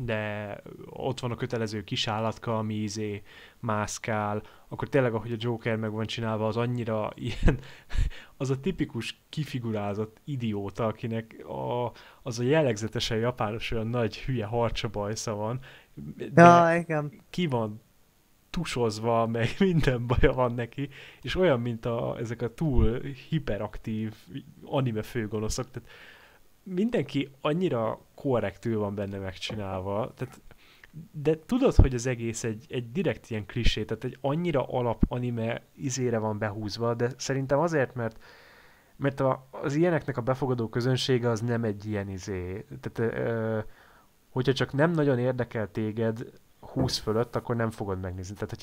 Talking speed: 135 wpm